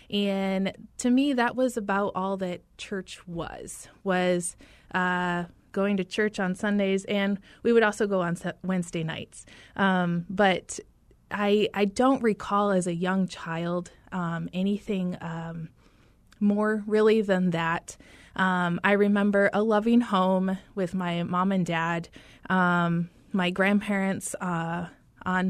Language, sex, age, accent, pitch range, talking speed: English, female, 20-39, American, 175-205 Hz, 135 wpm